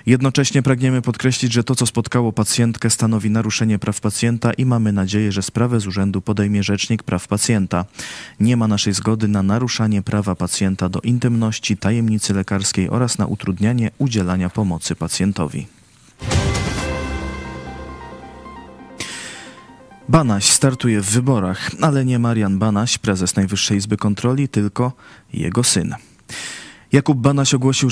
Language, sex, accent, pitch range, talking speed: Polish, male, native, 95-120 Hz, 125 wpm